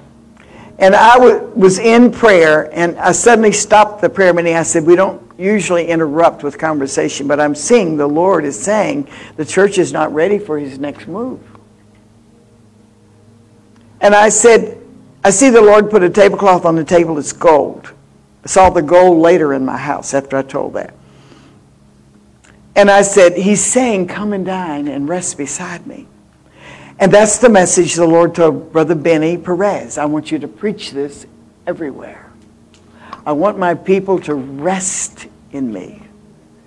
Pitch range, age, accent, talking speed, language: 140-190 Hz, 60-79, American, 165 wpm, English